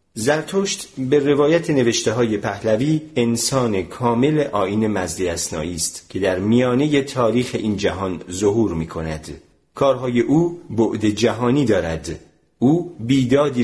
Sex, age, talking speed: male, 40-59, 115 wpm